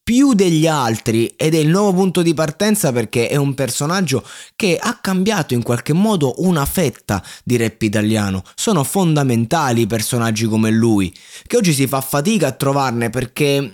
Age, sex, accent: 20-39, male, native